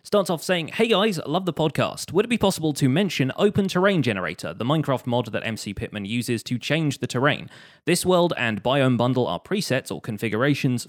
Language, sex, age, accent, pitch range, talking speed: English, male, 20-39, British, 105-140 Hz, 205 wpm